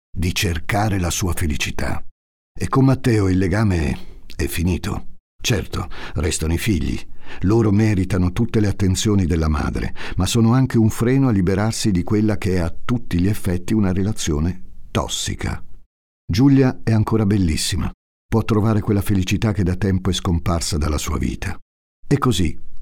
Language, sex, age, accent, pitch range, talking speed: Italian, male, 50-69, native, 85-105 Hz, 160 wpm